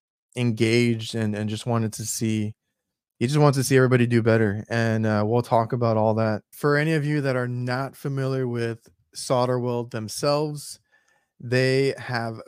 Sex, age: male, 20-39